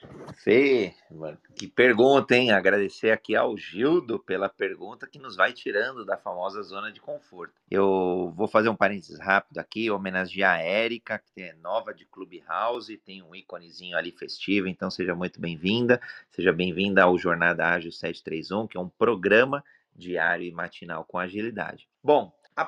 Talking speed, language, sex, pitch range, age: 160 wpm, Portuguese, male, 90-115 Hz, 30-49